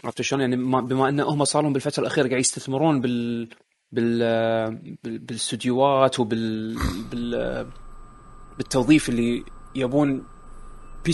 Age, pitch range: 30-49, 115-140 Hz